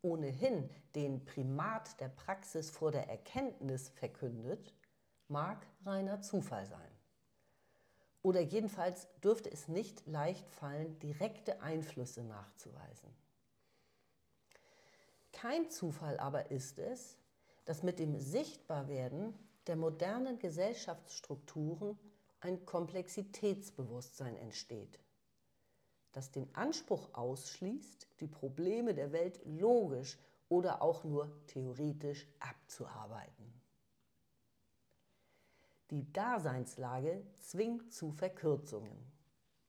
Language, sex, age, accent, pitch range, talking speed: German, female, 50-69, German, 145-205 Hz, 85 wpm